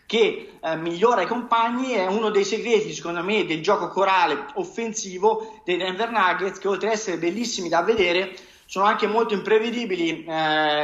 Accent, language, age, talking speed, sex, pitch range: native, Italian, 30-49, 165 wpm, male, 175-225 Hz